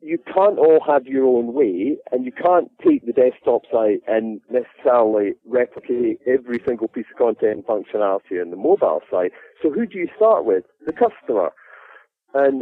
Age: 40-59